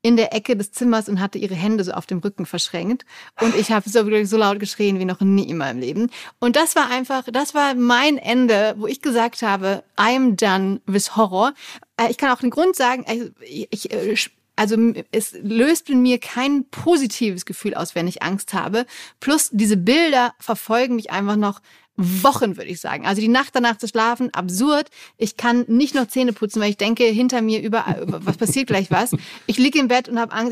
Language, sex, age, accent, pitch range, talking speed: German, female, 30-49, German, 200-245 Hz, 205 wpm